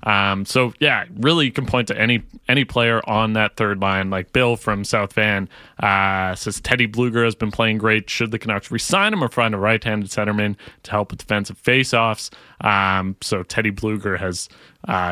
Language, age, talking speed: English, 30-49, 190 wpm